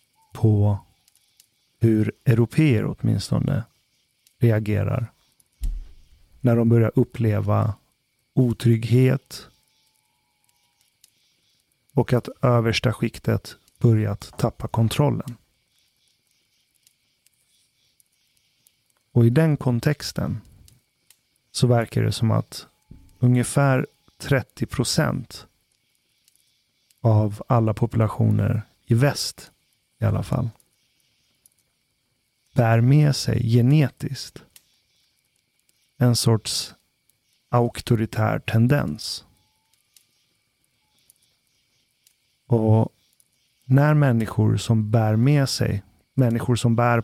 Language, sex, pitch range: Swedish, male, 110-130 Hz